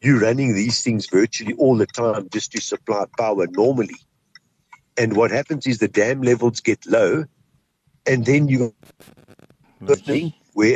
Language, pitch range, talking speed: English, 110-140 Hz, 160 wpm